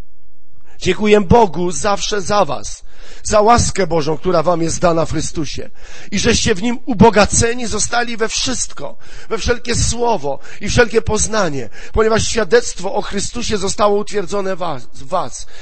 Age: 40-59